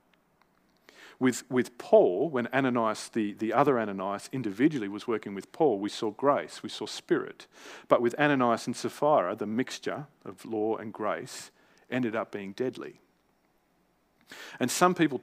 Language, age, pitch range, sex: English, 40-59, 110-145 Hz, male